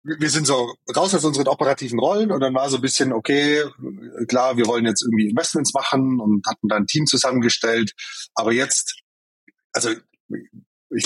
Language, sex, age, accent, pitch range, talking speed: German, male, 30-49, German, 100-130 Hz, 175 wpm